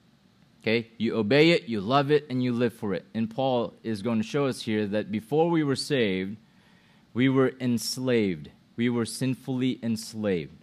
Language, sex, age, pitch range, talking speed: English, male, 30-49, 115-145 Hz, 175 wpm